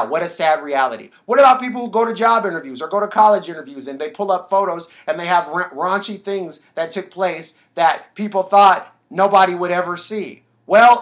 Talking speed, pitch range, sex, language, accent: 205 wpm, 165-210 Hz, male, English, American